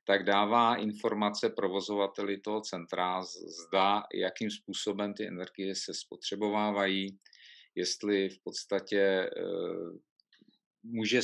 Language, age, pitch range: Czech, 50-69, 95-110 Hz